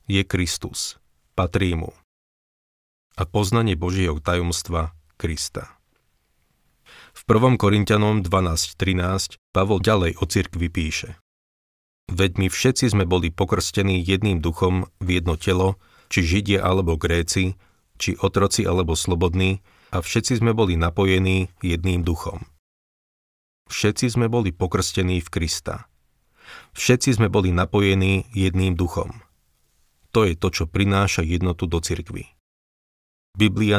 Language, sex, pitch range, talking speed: Slovak, male, 85-100 Hz, 115 wpm